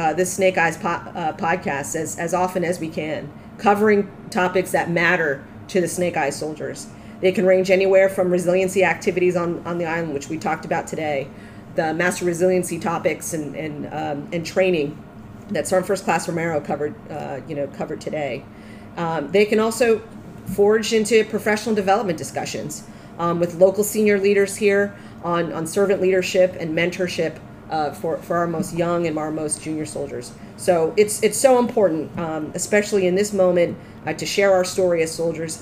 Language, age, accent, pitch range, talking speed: English, 40-59, American, 160-190 Hz, 180 wpm